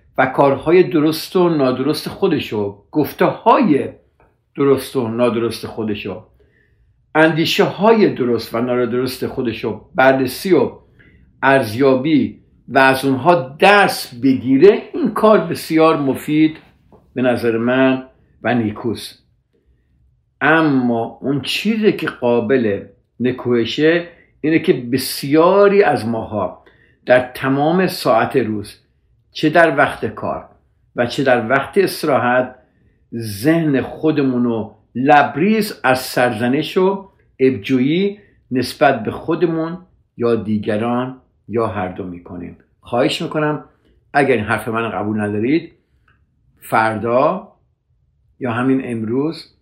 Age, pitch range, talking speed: 60-79, 115-155 Hz, 105 wpm